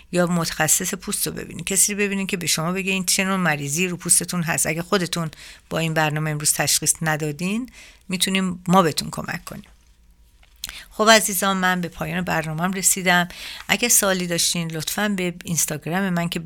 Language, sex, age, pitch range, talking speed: Persian, female, 50-69, 160-190 Hz, 160 wpm